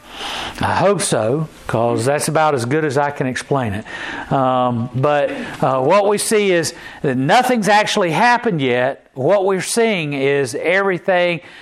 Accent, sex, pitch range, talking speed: American, male, 135-175 Hz, 155 wpm